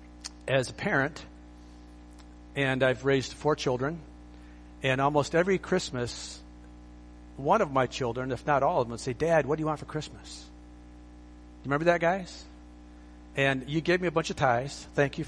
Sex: male